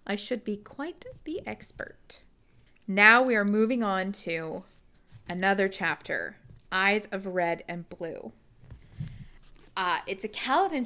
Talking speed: 125 wpm